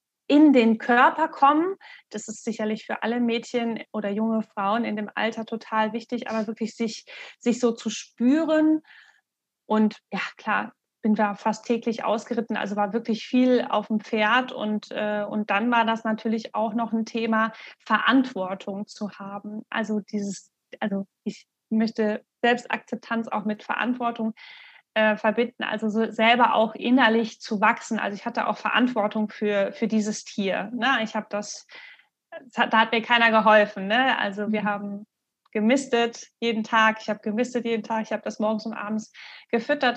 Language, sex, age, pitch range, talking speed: German, female, 20-39, 215-240 Hz, 155 wpm